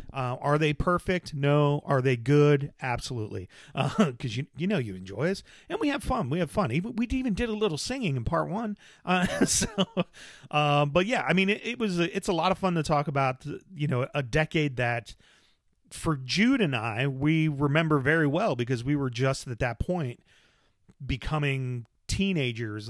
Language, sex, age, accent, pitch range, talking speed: English, male, 40-59, American, 125-165 Hz, 195 wpm